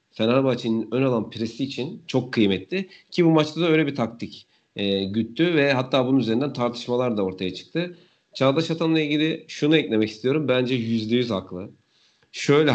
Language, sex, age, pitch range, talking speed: Turkish, male, 40-59, 110-135 Hz, 165 wpm